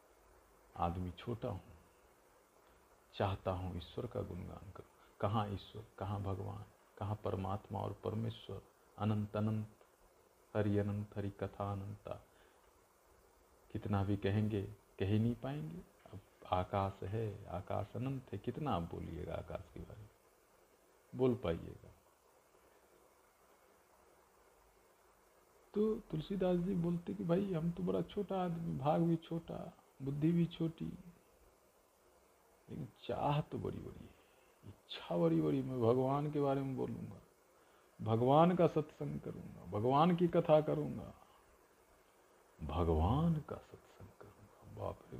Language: Hindi